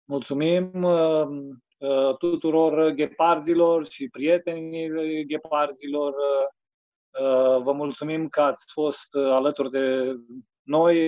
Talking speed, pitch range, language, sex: 85 wpm, 135-165 Hz, Romanian, male